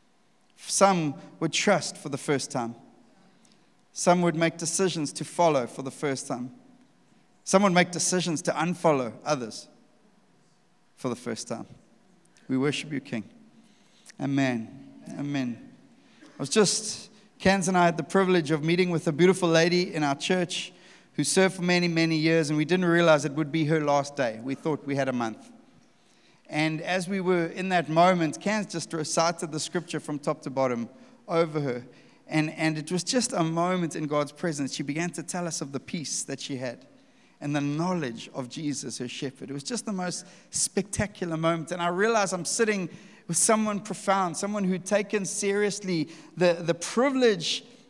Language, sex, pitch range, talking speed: English, male, 150-195 Hz, 180 wpm